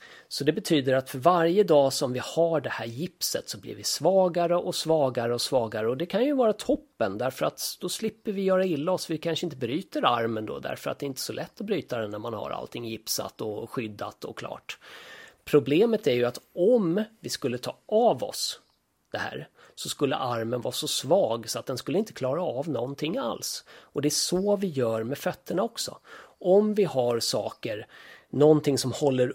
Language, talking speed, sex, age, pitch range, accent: Swedish, 210 wpm, male, 30-49, 120-165 Hz, native